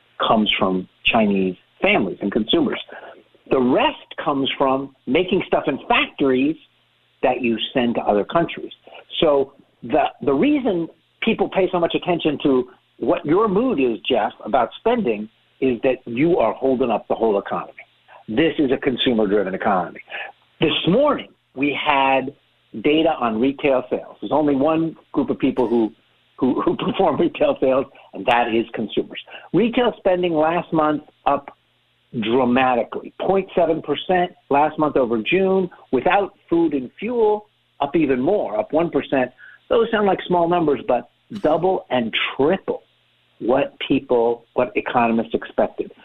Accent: American